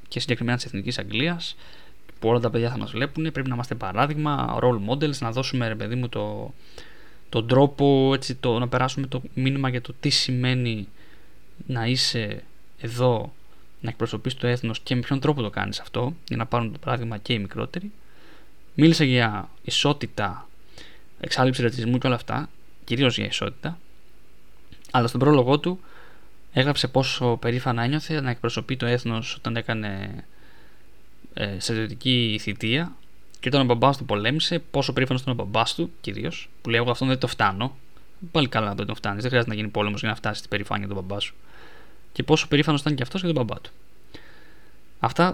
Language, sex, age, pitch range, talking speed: Greek, male, 20-39, 110-140 Hz, 180 wpm